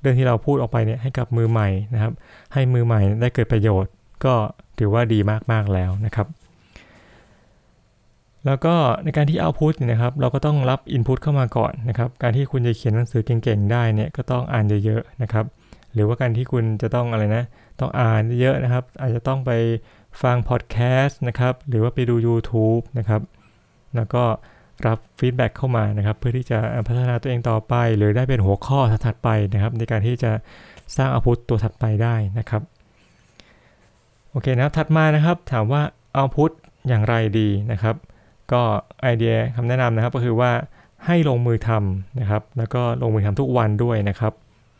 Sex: male